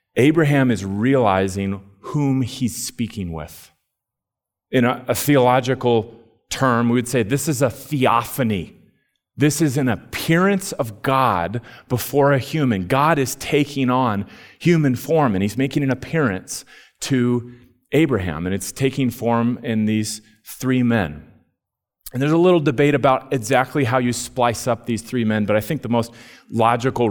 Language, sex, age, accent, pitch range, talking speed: English, male, 30-49, American, 110-140 Hz, 155 wpm